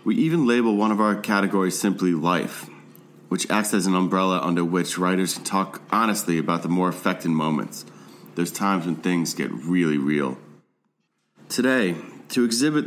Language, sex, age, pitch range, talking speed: English, male, 30-49, 85-110 Hz, 165 wpm